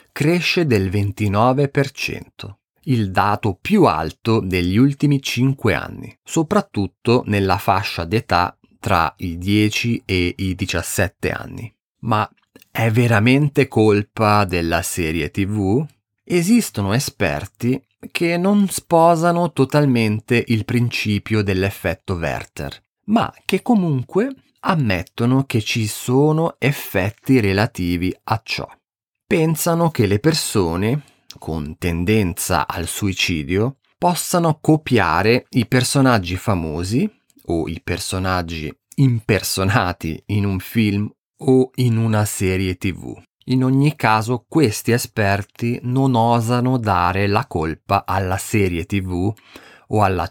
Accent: native